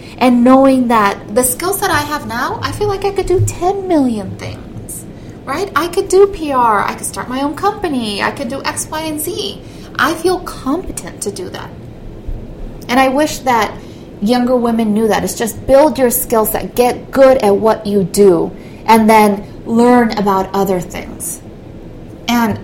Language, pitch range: English, 215-290 Hz